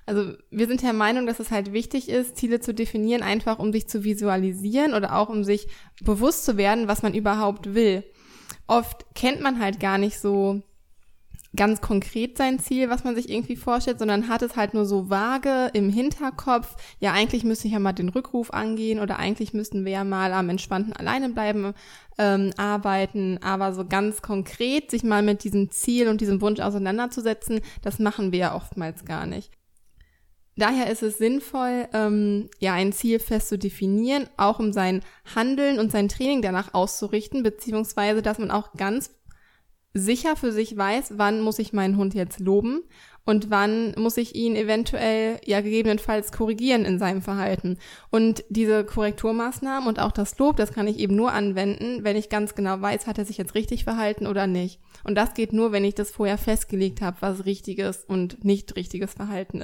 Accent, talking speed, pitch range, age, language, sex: German, 185 wpm, 200-230 Hz, 20-39, German, female